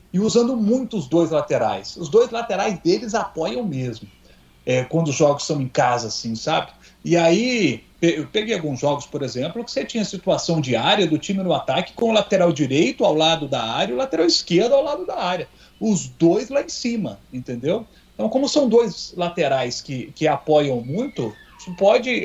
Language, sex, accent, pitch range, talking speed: Portuguese, male, Brazilian, 140-195 Hz, 195 wpm